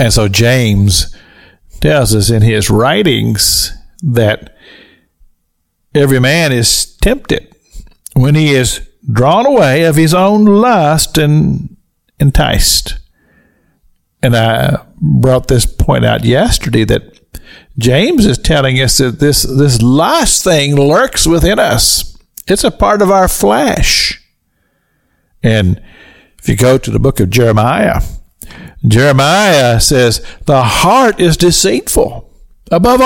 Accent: American